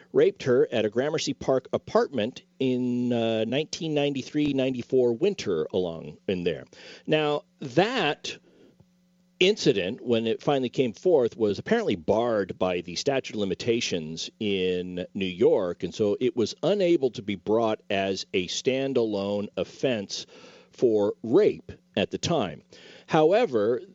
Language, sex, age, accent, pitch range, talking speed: English, male, 50-69, American, 125-200 Hz, 130 wpm